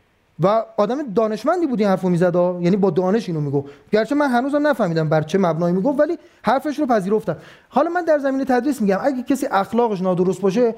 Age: 30-49